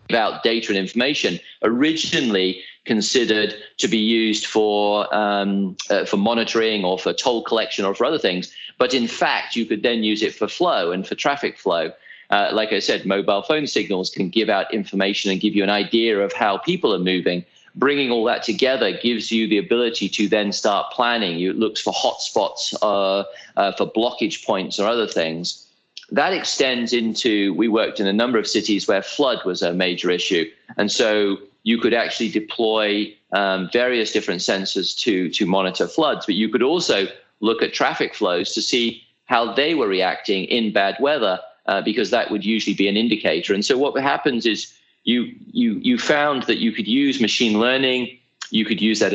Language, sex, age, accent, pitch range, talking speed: English, male, 40-59, British, 100-120 Hz, 190 wpm